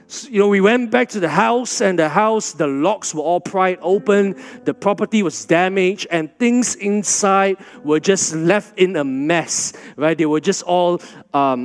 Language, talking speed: English, 185 wpm